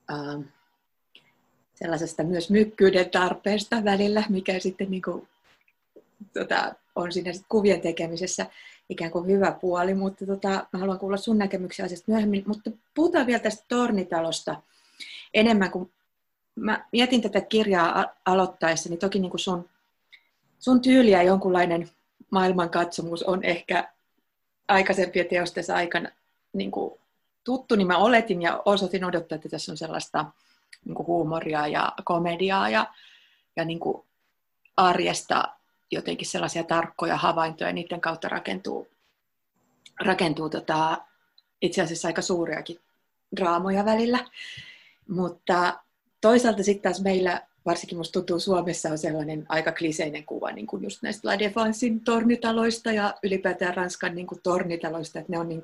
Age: 30-49